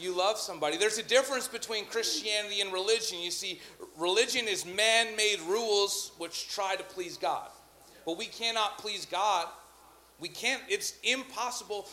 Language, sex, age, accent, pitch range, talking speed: English, male, 40-59, American, 145-225 Hz, 150 wpm